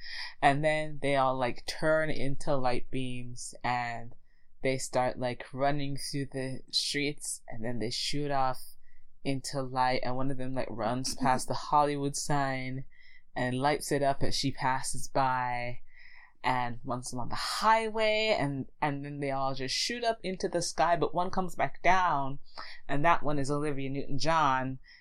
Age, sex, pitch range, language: 20-39, female, 130-155 Hz, English